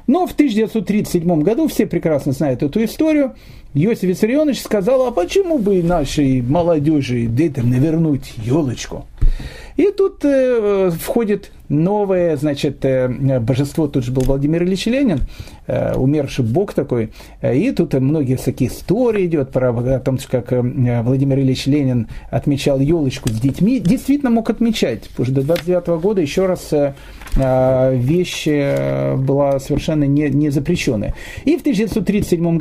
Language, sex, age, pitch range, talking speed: Russian, male, 40-59, 135-205 Hz, 130 wpm